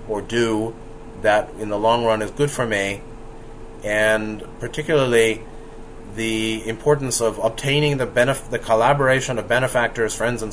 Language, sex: English, male